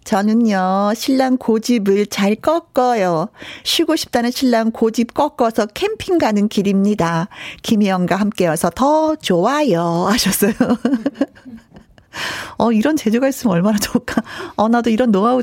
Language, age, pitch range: Korean, 40-59, 190-270 Hz